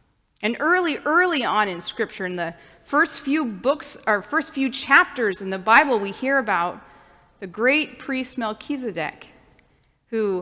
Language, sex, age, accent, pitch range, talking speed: English, female, 30-49, American, 200-270 Hz, 150 wpm